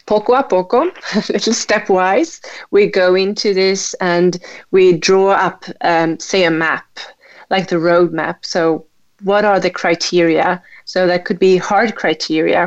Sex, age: female, 30-49